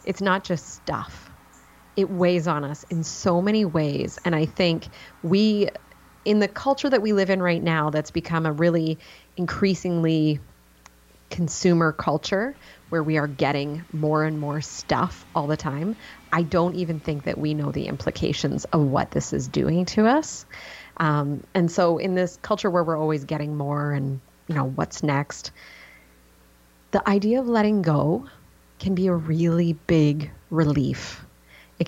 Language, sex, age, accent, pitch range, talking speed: English, female, 30-49, American, 150-180 Hz, 165 wpm